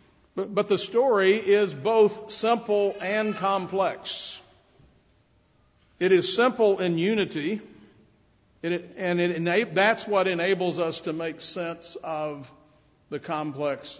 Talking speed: 105 wpm